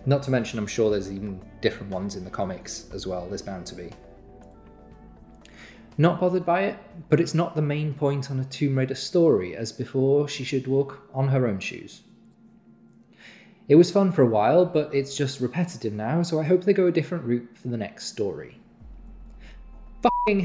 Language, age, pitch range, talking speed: English, 20-39, 110-150 Hz, 195 wpm